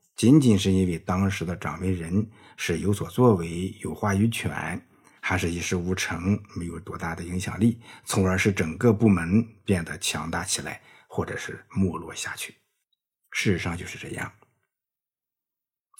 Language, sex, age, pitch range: Chinese, male, 50-69, 90-110 Hz